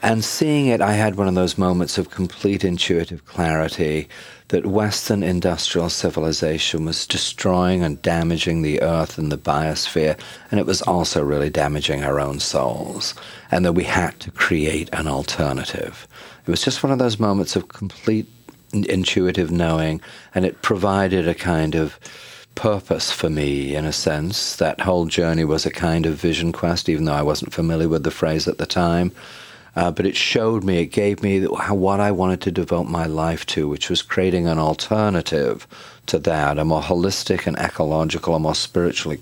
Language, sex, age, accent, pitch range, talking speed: English, male, 40-59, British, 80-95 Hz, 180 wpm